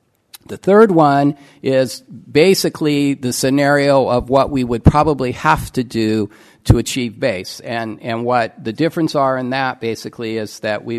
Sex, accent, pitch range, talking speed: male, American, 110-130 Hz, 165 wpm